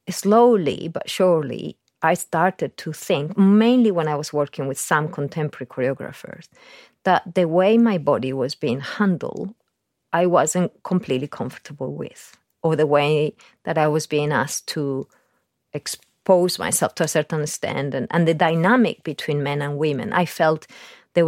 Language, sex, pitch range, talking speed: English, female, 150-180 Hz, 155 wpm